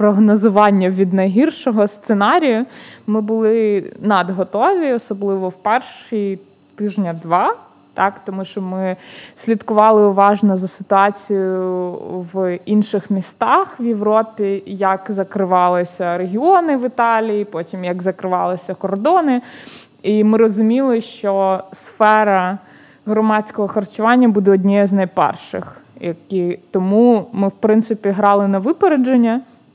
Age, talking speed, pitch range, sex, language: 20-39, 105 wpm, 190-220 Hz, female, Ukrainian